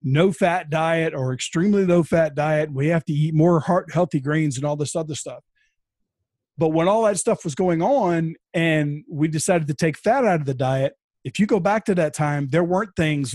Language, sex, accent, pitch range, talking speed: English, male, American, 140-175 Hz, 220 wpm